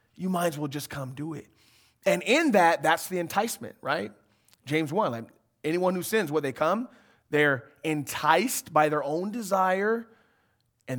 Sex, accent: male, American